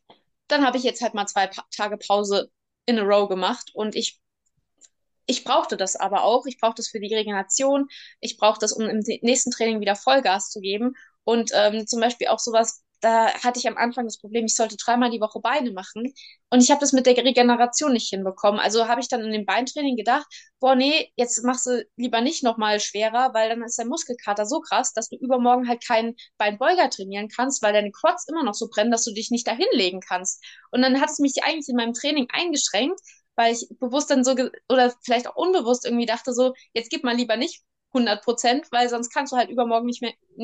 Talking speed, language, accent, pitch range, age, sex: 225 wpm, German, German, 220-260 Hz, 20-39, female